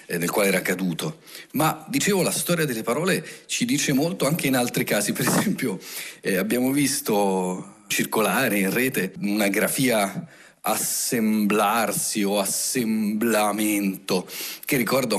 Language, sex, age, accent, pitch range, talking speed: Italian, male, 40-59, native, 105-140 Hz, 125 wpm